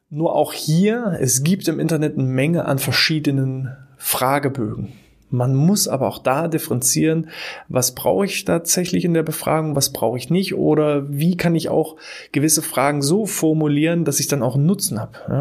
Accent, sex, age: German, male, 20-39